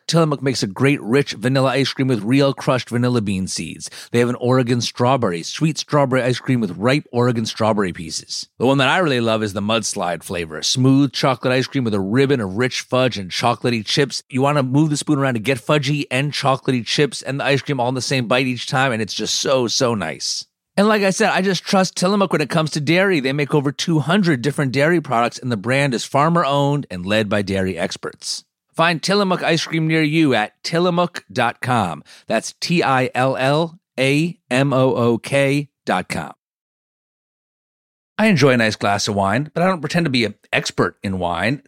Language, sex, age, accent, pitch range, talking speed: English, male, 30-49, American, 115-150 Hz, 200 wpm